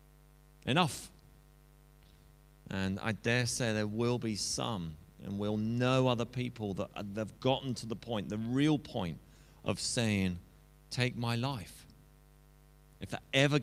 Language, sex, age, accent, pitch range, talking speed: English, male, 30-49, British, 90-130 Hz, 135 wpm